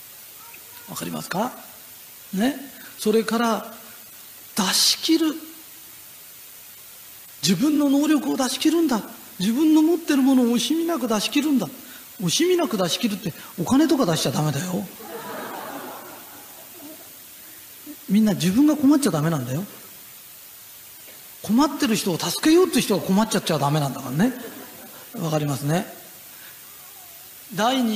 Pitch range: 185-280 Hz